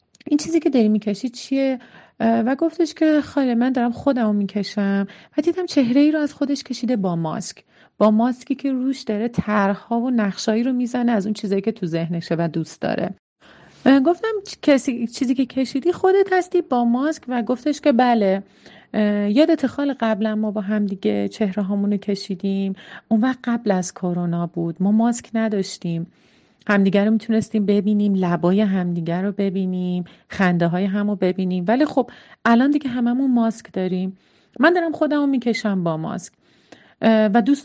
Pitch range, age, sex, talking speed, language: 190-275 Hz, 40-59, female, 165 wpm, Persian